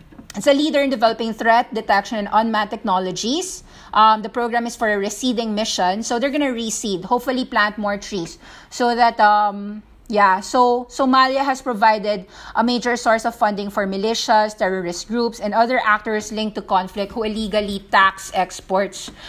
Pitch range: 200-235 Hz